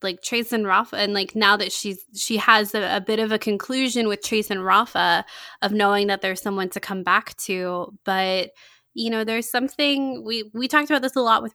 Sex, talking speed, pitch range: female, 225 wpm, 185-220 Hz